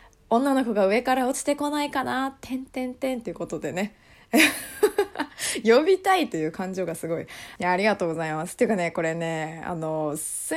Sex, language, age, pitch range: female, Japanese, 20-39, 175-290 Hz